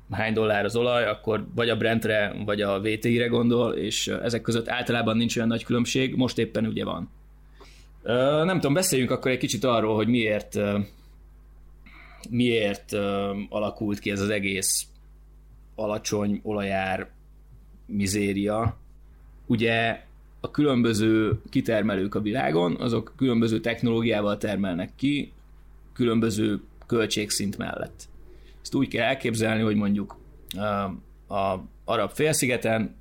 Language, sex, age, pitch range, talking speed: Hungarian, male, 20-39, 105-120 Hz, 120 wpm